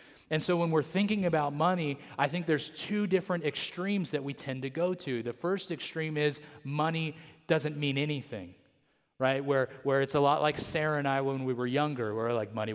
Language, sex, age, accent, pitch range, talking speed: English, male, 30-49, American, 120-150 Hz, 205 wpm